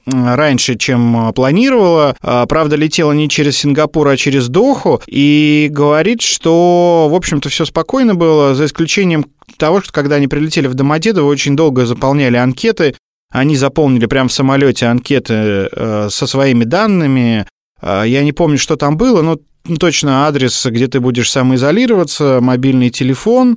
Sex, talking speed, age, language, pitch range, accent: male, 145 wpm, 20-39, Russian, 125-160 Hz, native